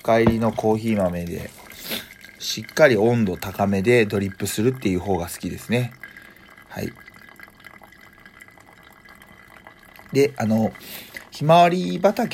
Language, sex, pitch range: Japanese, male, 95-125 Hz